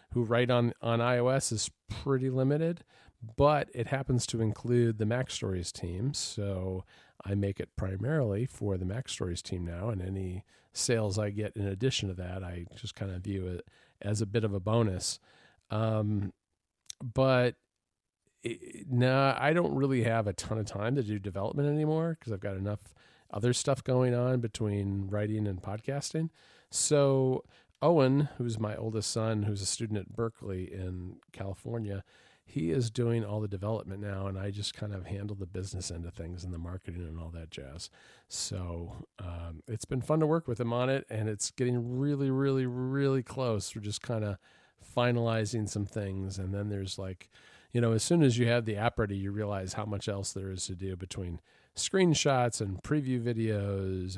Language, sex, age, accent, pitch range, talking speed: English, male, 40-59, American, 95-125 Hz, 185 wpm